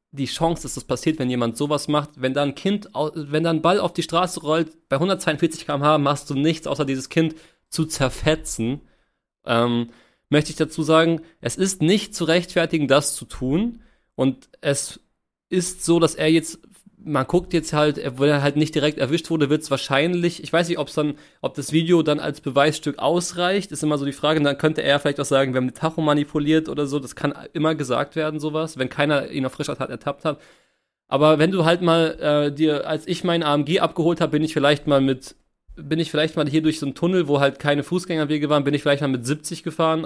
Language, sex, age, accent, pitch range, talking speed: German, male, 30-49, German, 140-170 Hz, 225 wpm